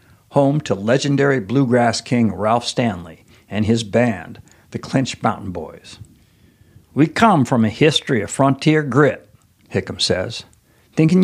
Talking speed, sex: 135 wpm, male